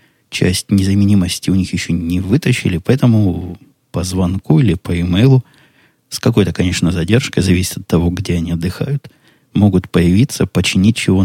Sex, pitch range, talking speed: male, 85-105 Hz, 145 wpm